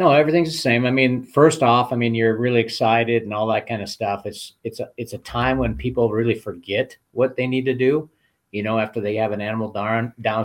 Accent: American